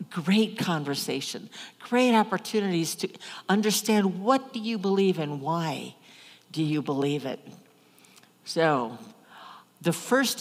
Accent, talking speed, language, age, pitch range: American, 110 wpm, English, 60-79, 150-195 Hz